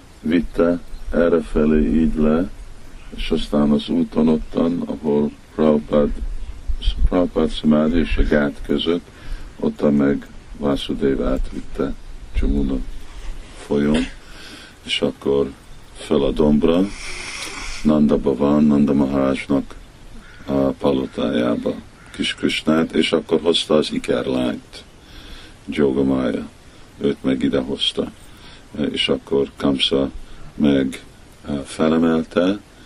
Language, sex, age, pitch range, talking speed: Hungarian, male, 50-69, 70-80 Hz, 90 wpm